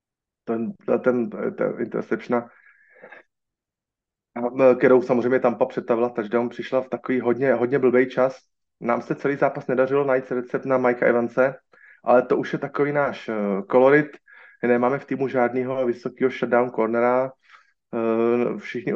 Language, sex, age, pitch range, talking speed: Slovak, male, 30-49, 120-135 Hz, 140 wpm